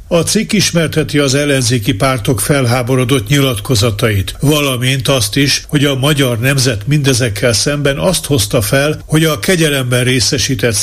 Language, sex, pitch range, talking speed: Hungarian, male, 125-145 Hz, 135 wpm